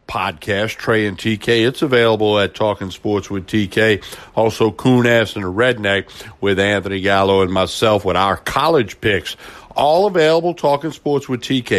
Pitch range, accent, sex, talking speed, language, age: 100-130 Hz, American, male, 160 wpm, English, 60-79